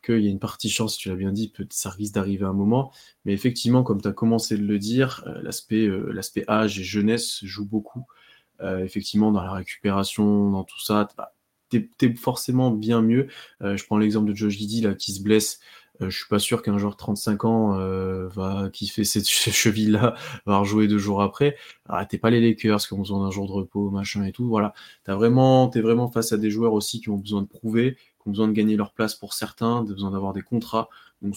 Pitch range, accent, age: 100-115 Hz, French, 20-39